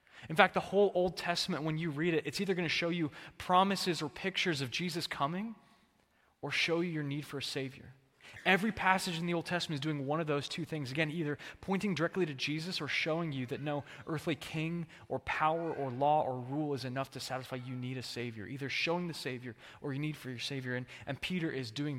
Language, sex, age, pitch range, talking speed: English, male, 20-39, 135-175 Hz, 230 wpm